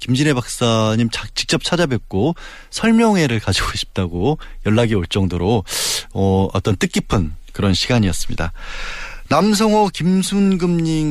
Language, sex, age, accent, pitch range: Korean, male, 20-39, native, 115-175 Hz